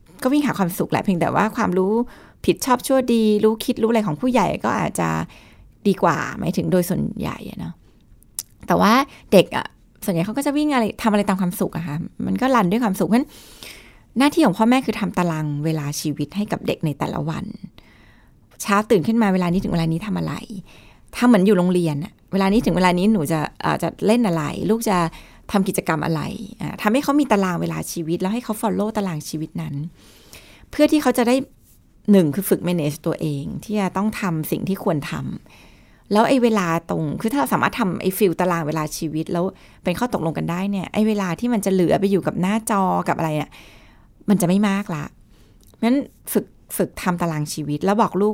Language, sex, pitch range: Thai, female, 165-220 Hz